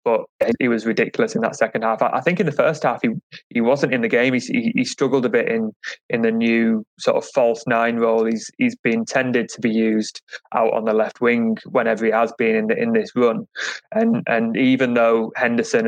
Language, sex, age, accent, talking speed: English, male, 20-39, British, 225 wpm